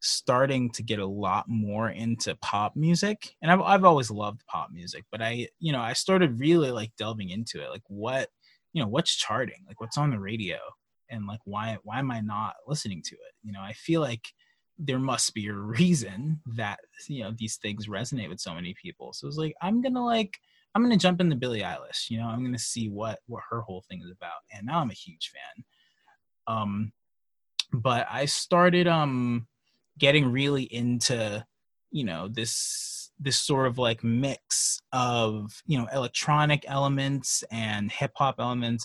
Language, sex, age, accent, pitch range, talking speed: English, male, 20-39, American, 110-145 Hz, 190 wpm